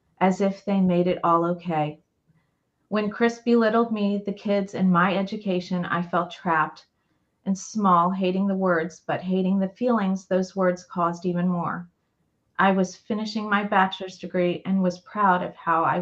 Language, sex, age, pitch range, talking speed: English, female, 30-49, 170-195 Hz, 170 wpm